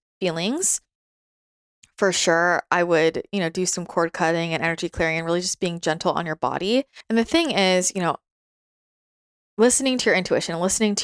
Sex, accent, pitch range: female, American, 165-190 Hz